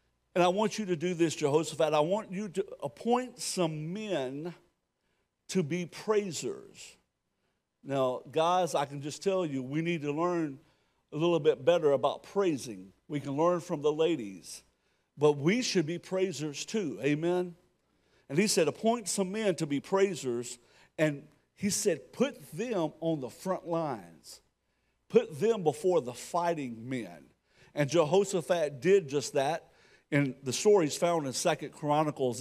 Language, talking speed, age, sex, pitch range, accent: English, 155 wpm, 50-69, male, 145-195 Hz, American